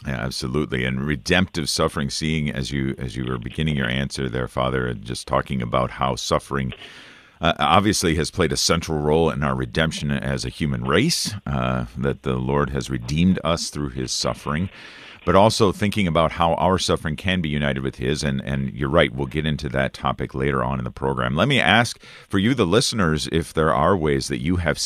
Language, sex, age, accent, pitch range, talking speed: English, male, 50-69, American, 65-80 Hz, 205 wpm